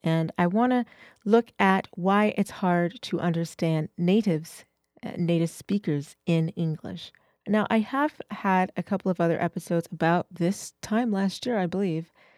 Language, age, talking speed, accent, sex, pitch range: English, 40-59, 155 wpm, American, female, 165-210 Hz